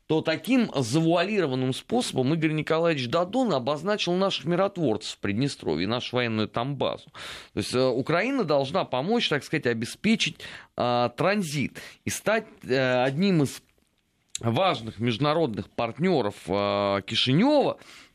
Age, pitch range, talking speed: 30-49, 115-170 Hz, 110 wpm